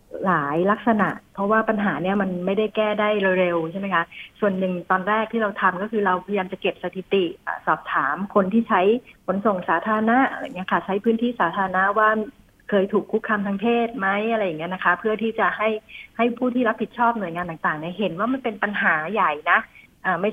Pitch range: 180-215 Hz